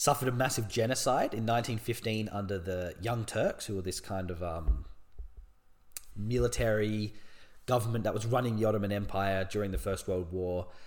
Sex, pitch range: male, 95-130 Hz